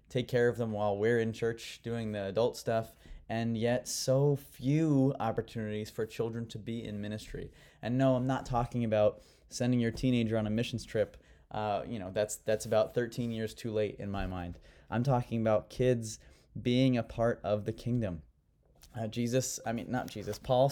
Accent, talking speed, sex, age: American, 190 wpm, male, 20-39